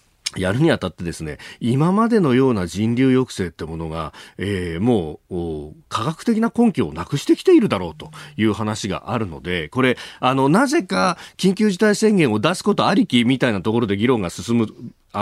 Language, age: Japanese, 40-59